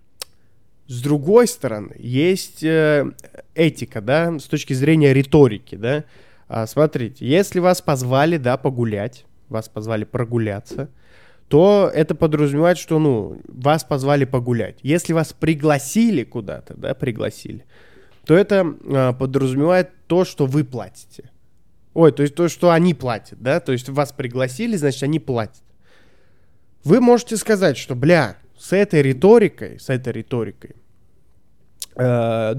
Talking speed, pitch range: 130 wpm, 120-160 Hz